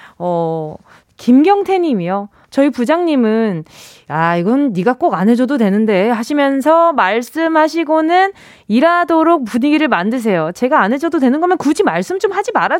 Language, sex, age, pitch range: Korean, female, 20-39, 210-320 Hz